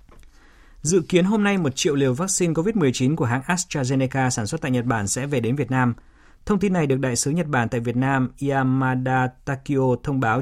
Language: Vietnamese